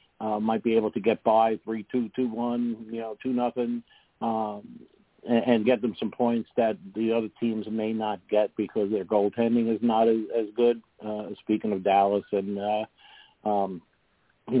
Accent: American